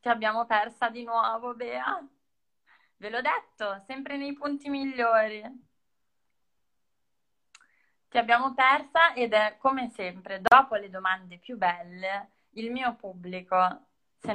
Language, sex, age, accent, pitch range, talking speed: Italian, female, 20-39, native, 190-250 Hz, 120 wpm